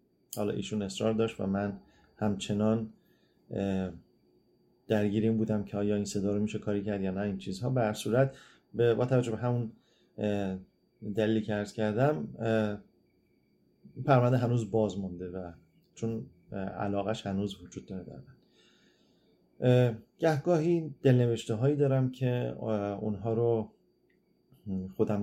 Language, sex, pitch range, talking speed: Persian, male, 100-120 Hz, 110 wpm